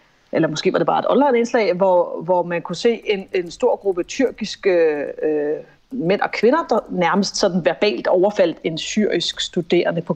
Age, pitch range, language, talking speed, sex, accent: 30-49, 180-225 Hz, Danish, 185 wpm, female, native